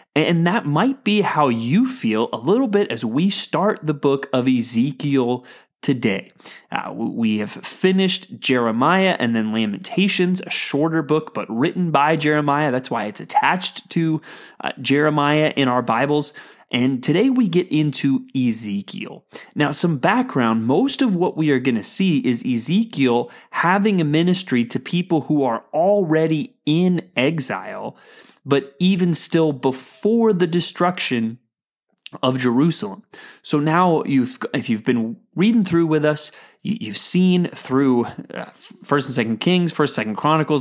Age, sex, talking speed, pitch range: 20-39, male, 145 wpm, 130-180 Hz